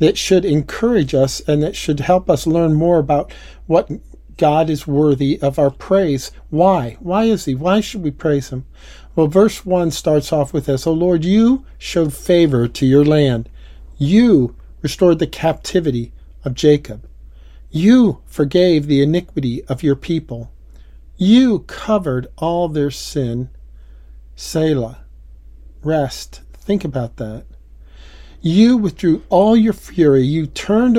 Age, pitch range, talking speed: 50-69, 130-180 Hz, 140 wpm